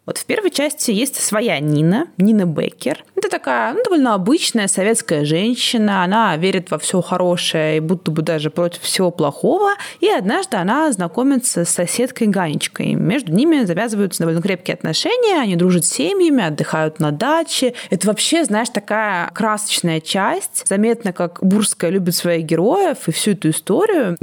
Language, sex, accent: Russian, female, native